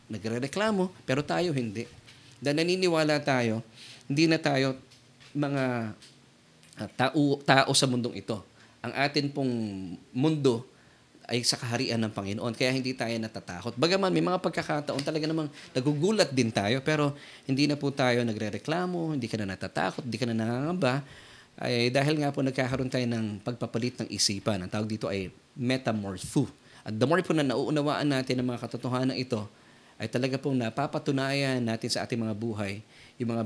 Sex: male